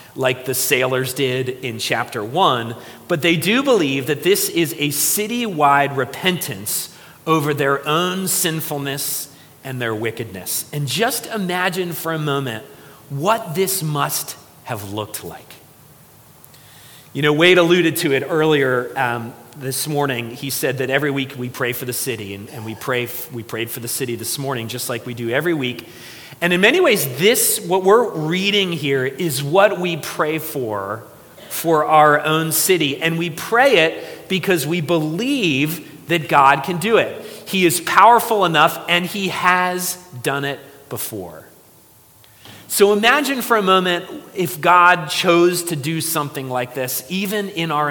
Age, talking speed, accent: 40-59, 160 wpm, American